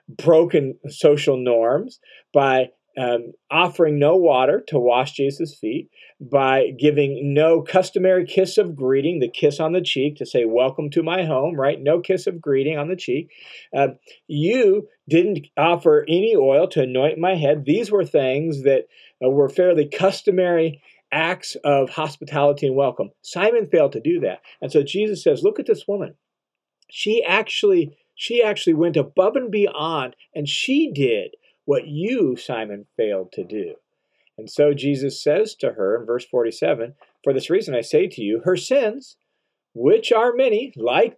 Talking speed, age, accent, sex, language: 165 wpm, 40-59, American, male, English